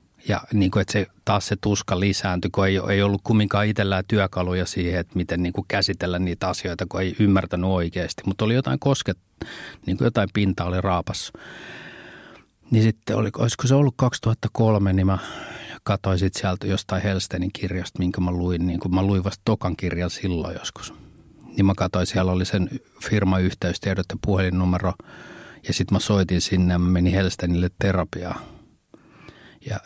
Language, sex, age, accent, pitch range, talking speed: Finnish, male, 30-49, native, 90-100 Hz, 165 wpm